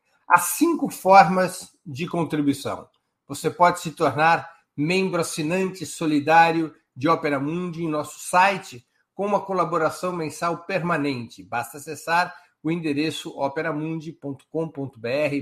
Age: 60-79